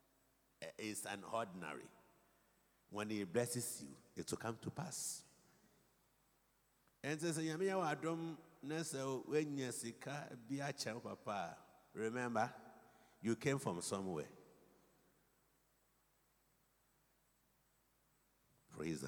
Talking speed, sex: 65 wpm, male